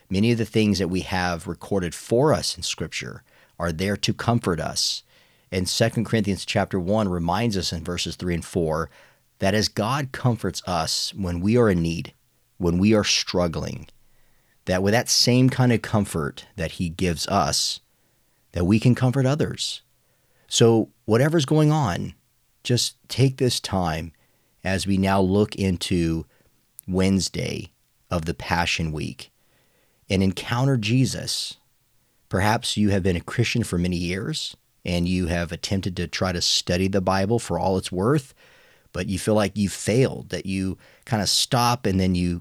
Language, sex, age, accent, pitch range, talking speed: English, male, 40-59, American, 90-110 Hz, 165 wpm